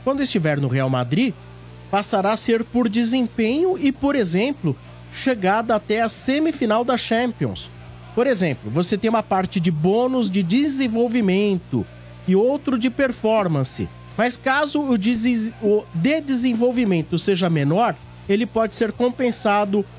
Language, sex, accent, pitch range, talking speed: Portuguese, male, Brazilian, 165-230 Hz, 130 wpm